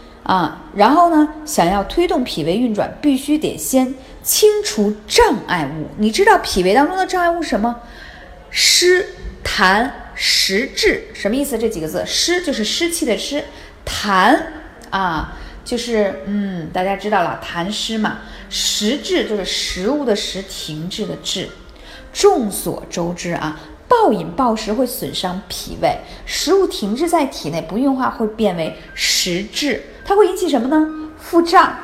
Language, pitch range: Chinese, 200-325 Hz